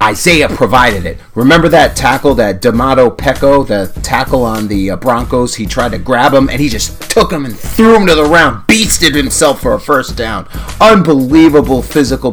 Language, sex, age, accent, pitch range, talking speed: English, male, 30-49, American, 110-145 Hz, 190 wpm